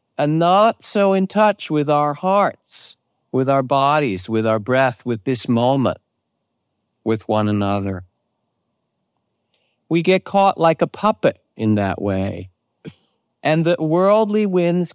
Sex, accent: male, American